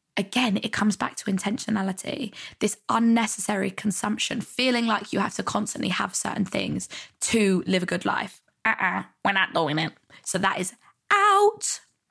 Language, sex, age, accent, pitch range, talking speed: English, female, 10-29, British, 195-230 Hz, 165 wpm